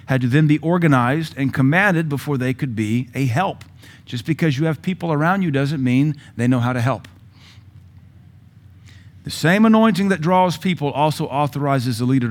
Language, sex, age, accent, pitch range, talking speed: English, male, 40-59, American, 105-135 Hz, 180 wpm